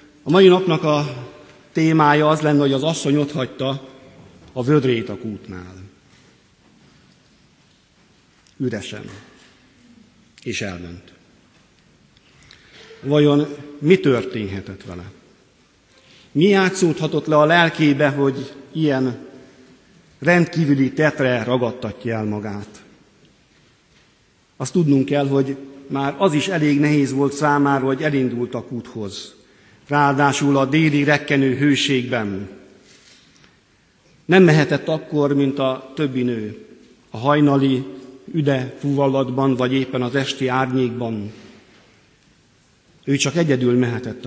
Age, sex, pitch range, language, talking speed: 50-69, male, 125-155 Hz, Hungarian, 100 wpm